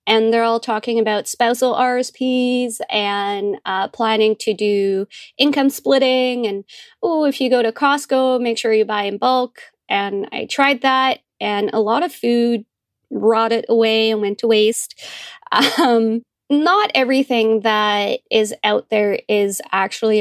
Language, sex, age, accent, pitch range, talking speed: English, female, 20-39, American, 205-245 Hz, 150 wpm